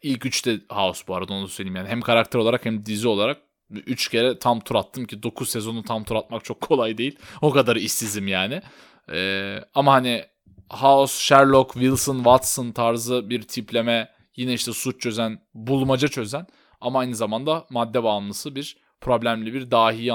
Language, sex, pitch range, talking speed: Turkish, male, 115-145 Hz, 175 wpm